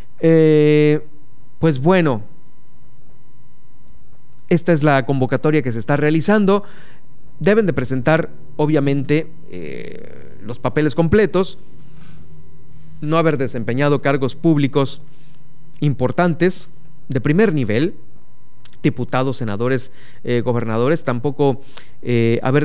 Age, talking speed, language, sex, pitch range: 30-49, 95 wpm, Spanish, male, 125-155 Hz